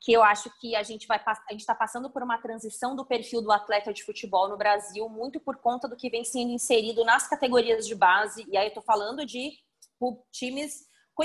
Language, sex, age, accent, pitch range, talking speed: Portuguese, female, 20-39, Brazilian, 205-260 Hz, 215 wpm